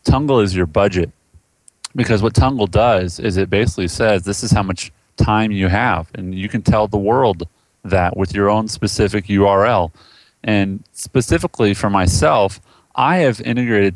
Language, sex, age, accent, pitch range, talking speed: English, male, 30-49, American, 95-115 Hz, 165 wpm